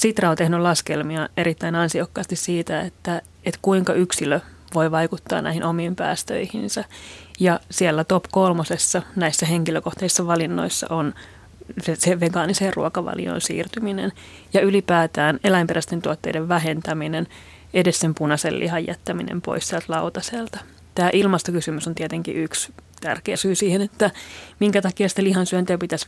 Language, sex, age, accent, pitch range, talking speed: Finnish, female, 30-49, native, 165-195 Hz, 125 wpm